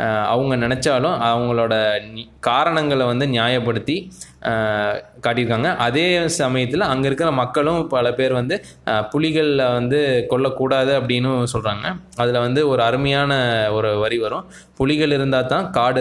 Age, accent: 20-39, native